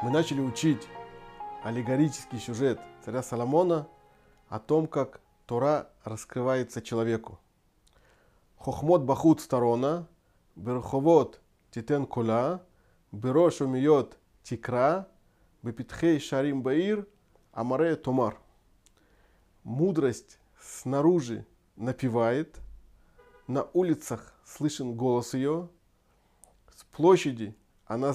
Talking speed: 75 wpm